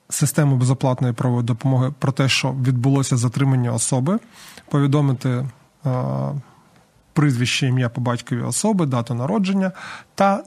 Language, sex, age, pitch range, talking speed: Ukrainian, male, 20-39, 130-165 Hz, 105 wpm